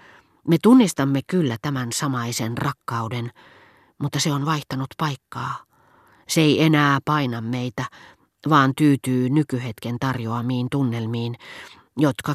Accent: native